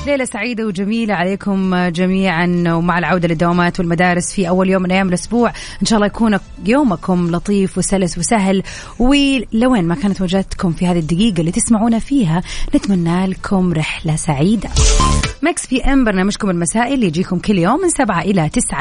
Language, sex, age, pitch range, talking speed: Arabic, female, 30-49, 175-235 Hz, 160 wpm